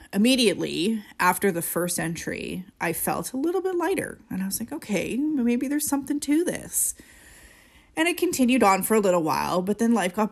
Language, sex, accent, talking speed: English, female, American, 190 wpm